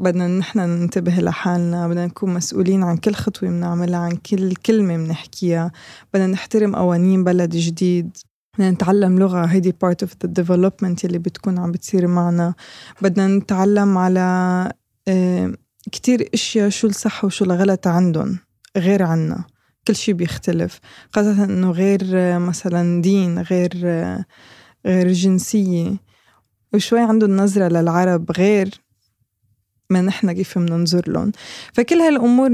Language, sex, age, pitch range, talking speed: Arabic, female, 20-39, 175-205 Hz, 125 wpm